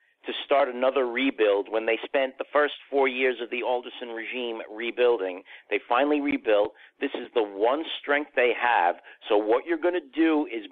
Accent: American